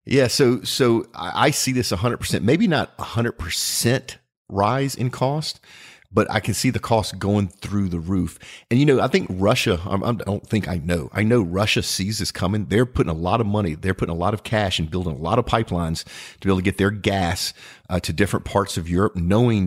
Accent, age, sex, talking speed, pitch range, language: American, 40-59, male, 235 wpm, 90-110 Hz, English